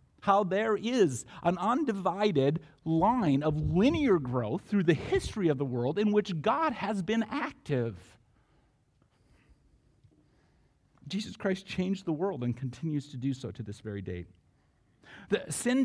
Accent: American